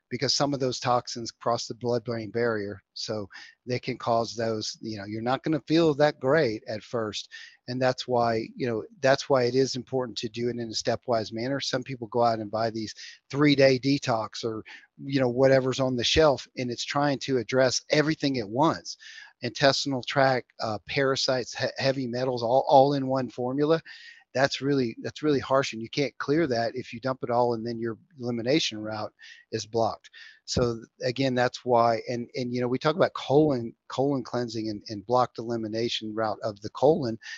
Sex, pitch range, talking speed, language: male, 115-130 Hz, 195 wpm, English